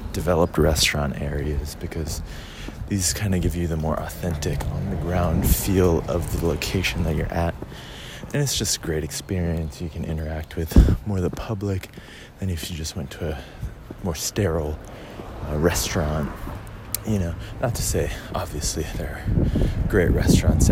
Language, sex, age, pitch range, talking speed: English, male, 20-39, 80-100 Hz, 160 wpm